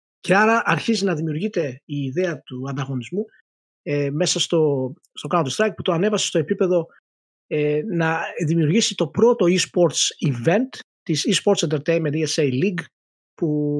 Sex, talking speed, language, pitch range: male, 140 wpm, Greek, 145-195 Hz